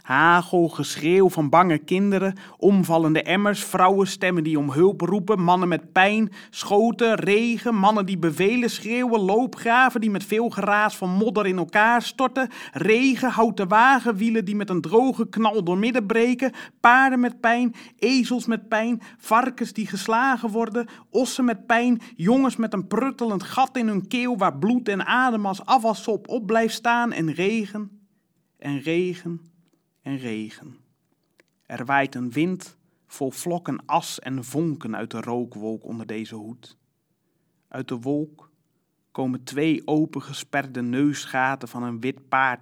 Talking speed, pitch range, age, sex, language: 150 wpm, 140-220 Hz, 30-49, male, Dutch